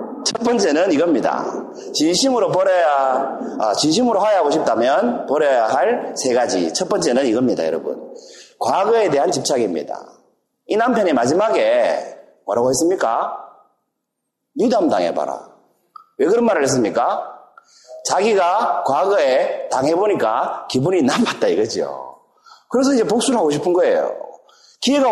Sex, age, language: male, 40-59, Korean